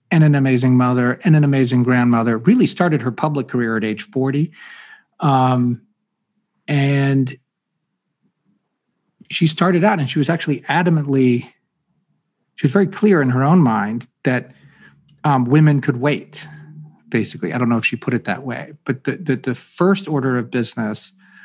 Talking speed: 160 wpm